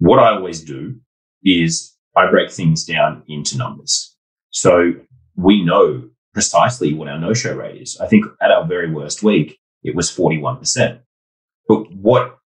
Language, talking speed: English, 155 wpm